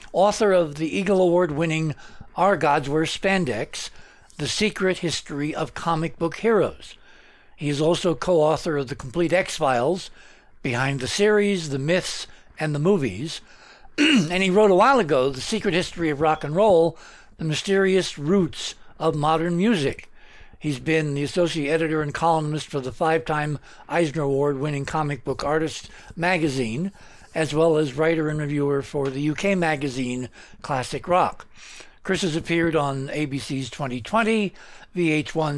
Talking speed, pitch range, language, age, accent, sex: 145 wpm, 145-180 Hz, English, 60-79, American, male